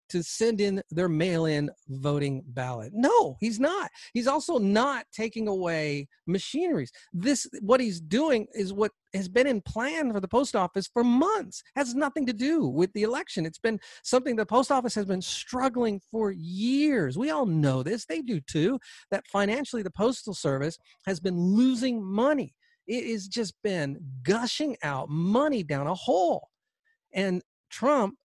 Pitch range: 175-255 Hz